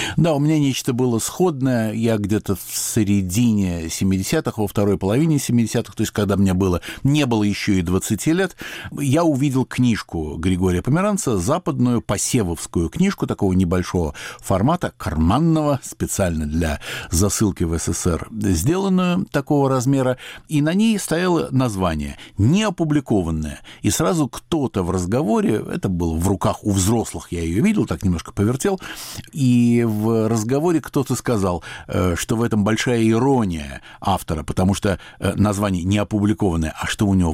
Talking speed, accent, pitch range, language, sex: 140 wpm, native, 95-125 Hz, Russian, male